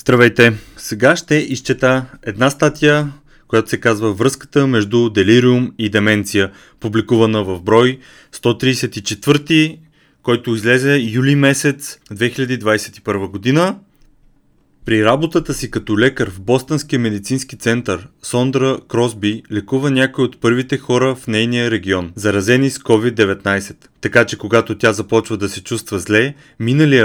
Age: 30-49